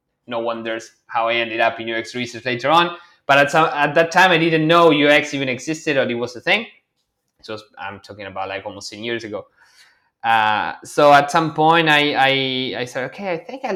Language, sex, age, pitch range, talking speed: English, male, 20-39, 120-150 Hz, 220 wpm